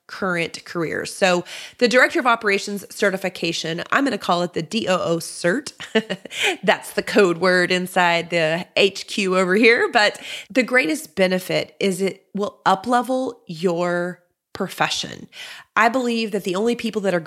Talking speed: 155 wpm